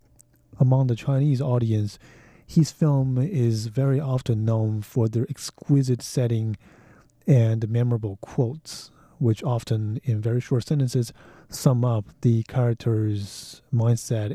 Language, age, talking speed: English, 30-49, 115 wpm